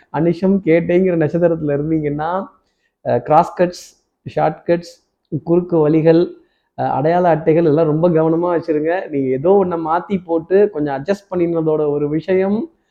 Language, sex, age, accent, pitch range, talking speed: Tamil, male, 20-39, native, 140-175 Hz, 110 wpm